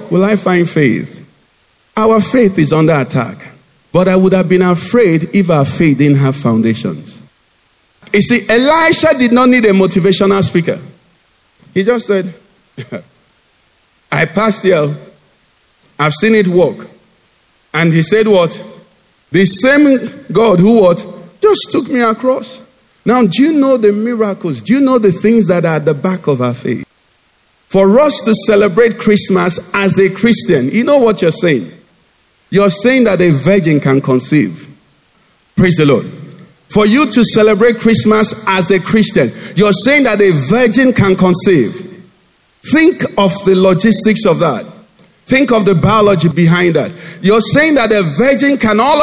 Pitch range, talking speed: 175-230 Hz, 160 wpm